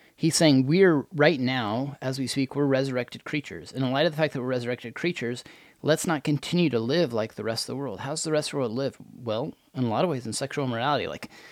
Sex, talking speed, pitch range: male, 260 wpm, 110-145 Hz